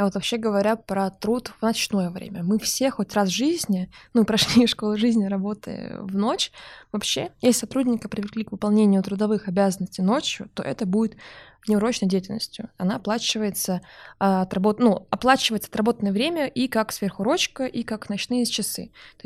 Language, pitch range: Russian, 200-235 Hz